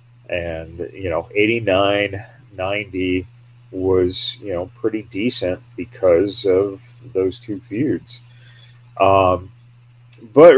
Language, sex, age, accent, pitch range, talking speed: English, male, 40-59, American, 100-120 Hz, 95 wpm